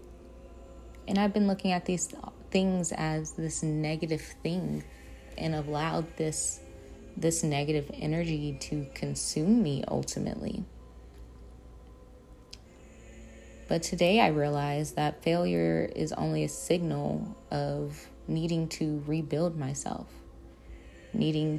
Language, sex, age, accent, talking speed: English, female, 20-39, American, 105 wpm